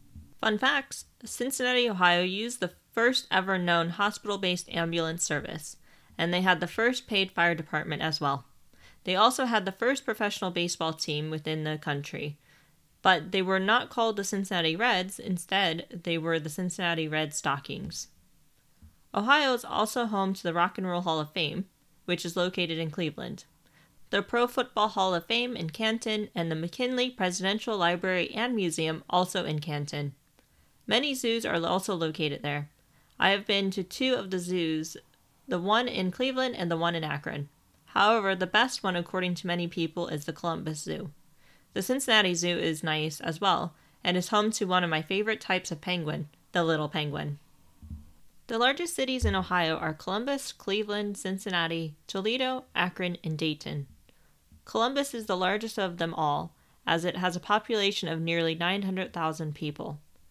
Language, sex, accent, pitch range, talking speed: English, female, American, 160-210 Hz, 165 wpm